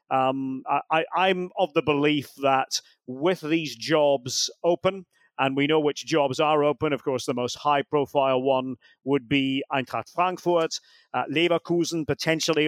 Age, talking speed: 40-59, 150 wpm